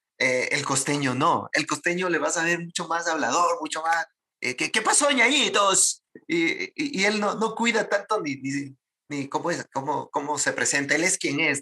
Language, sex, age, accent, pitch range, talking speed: Spanish, male, 30-49, Mexican, 135-185 Hz, 210 wpm